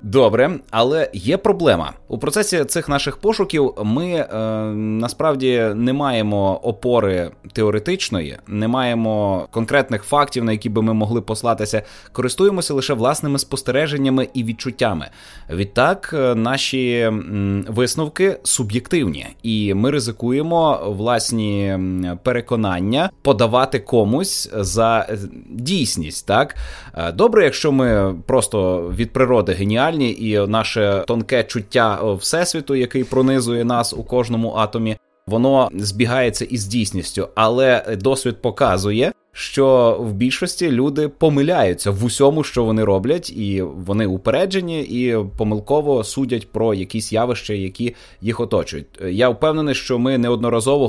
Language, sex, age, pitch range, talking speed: Ukrainian, male, 20-39, 105-135 Hz, 120 wpm